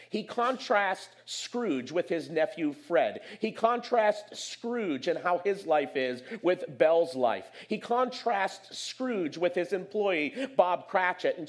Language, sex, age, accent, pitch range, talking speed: English, male, 40-59, American, 160-225 Hz, 140 wpm